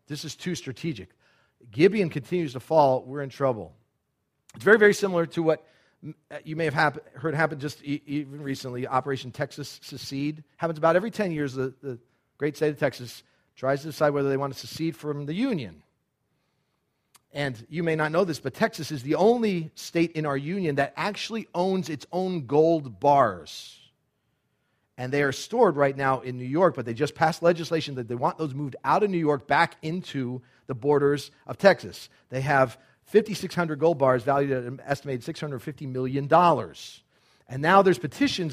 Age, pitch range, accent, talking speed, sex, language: 40-59, 135-170 Hz, American, 180 wpm, male, English